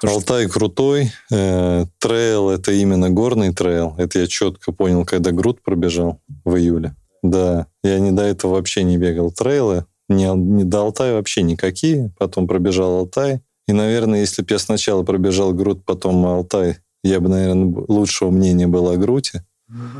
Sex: male